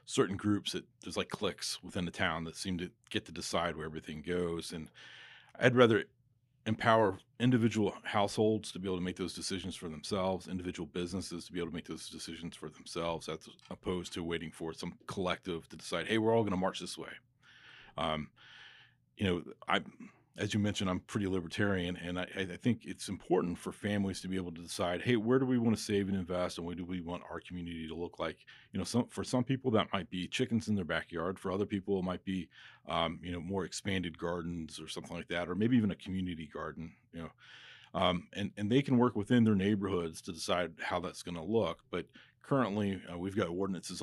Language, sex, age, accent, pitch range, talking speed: English, male, 40-59, American, 85-105 Hz, 220 wpm